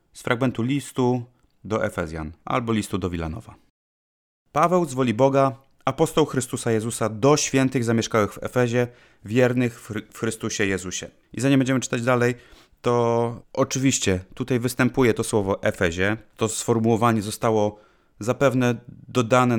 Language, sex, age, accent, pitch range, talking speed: Polish, male, 30-49, native, 105-130 Hz, 130 wpm